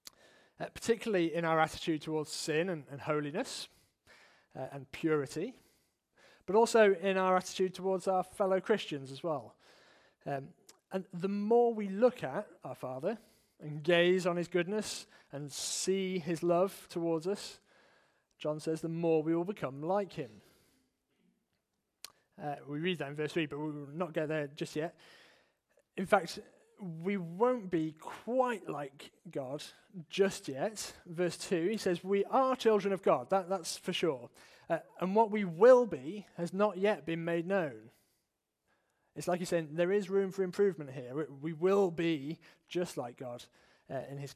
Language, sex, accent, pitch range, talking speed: English, male, British, 155-195 Hz, 165 wpm